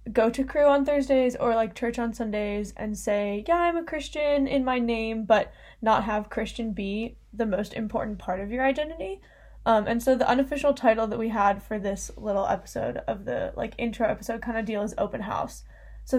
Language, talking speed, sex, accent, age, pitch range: English, 210 wpm, female, American, 10-29, 205-235 Hz